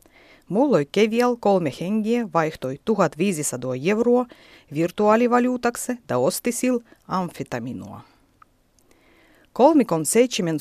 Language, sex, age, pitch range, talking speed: Finnish, female, 30-49, 155-240 Hz, 75 wpm